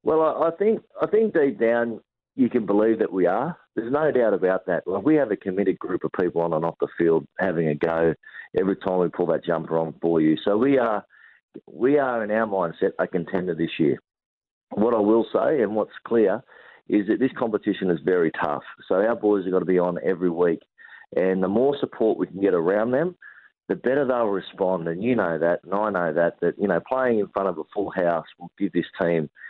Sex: male